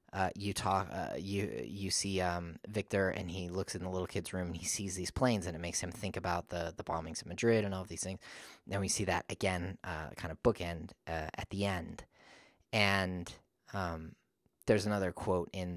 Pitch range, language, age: 90-105 Hz, English, 30-49